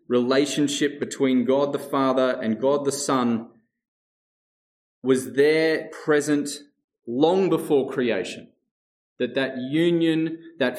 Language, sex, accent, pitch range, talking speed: English, male, Australian, 125-165 Hz, 105 wpm